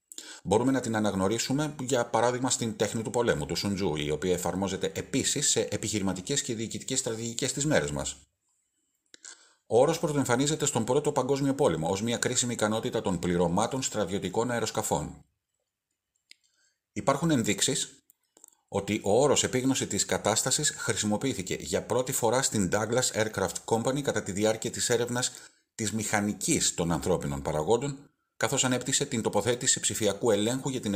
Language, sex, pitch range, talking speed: Greek, male, 100-130 Hz, 140 wpm